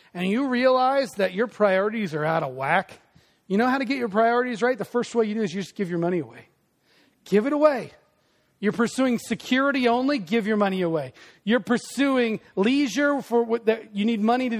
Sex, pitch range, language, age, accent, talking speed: male, 185-255 Hz, English, 40-59, American, 210 wpm